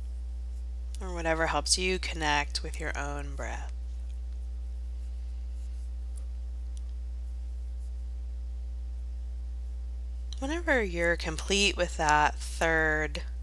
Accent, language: American, English